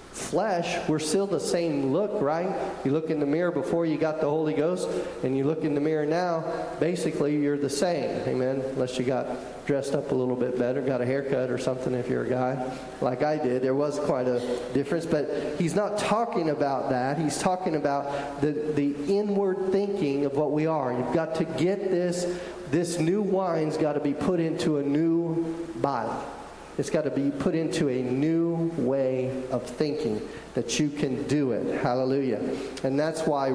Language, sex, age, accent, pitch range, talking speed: English, male, 40-59, American, 135-170 Hz, 195 wpm